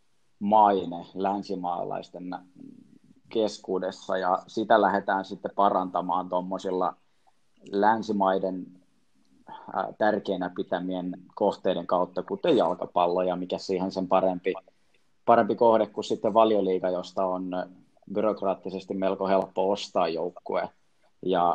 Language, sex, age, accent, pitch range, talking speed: Finnish, male, 20-39, native, 90-100 Hz, 90 wpm